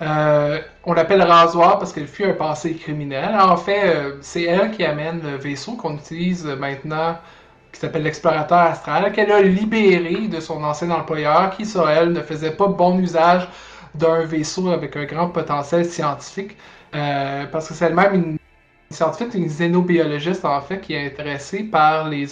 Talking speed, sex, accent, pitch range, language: 170 wpm, male, Canadian, 150-180 Hz, French